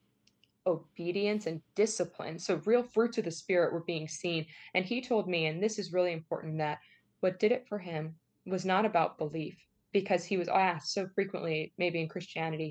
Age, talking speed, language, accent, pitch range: 20-39, 190 wpm, English, American, 160-190 Hz